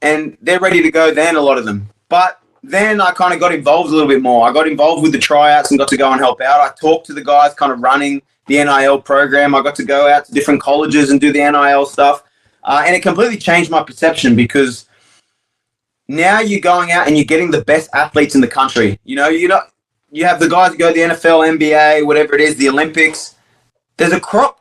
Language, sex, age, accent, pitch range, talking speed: English, male, 20-39, Australian, 140-175 Hz, 245 wpm